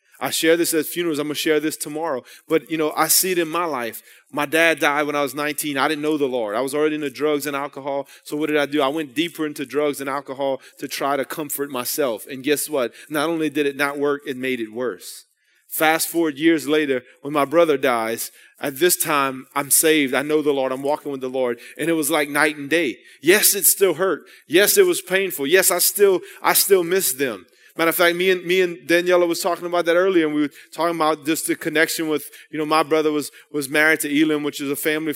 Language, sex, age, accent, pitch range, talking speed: English, male, 30-49, American, 140-160 Hz, 255 wpm